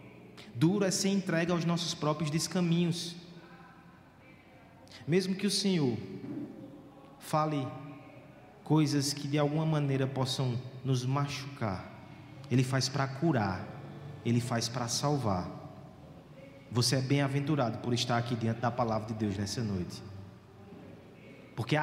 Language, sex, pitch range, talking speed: Portuguese, male, 120-185 Hz, 120 wpm